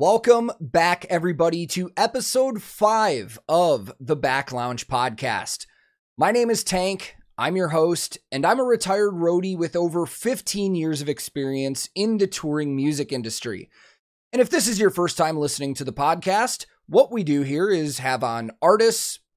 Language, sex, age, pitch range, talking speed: English, male, 30-49, 150-215 Hz, 165 wpm